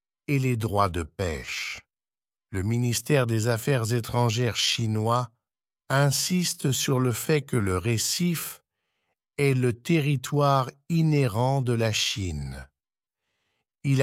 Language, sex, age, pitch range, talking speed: English, male, 60-79, 120-150 Hz, 110 wpm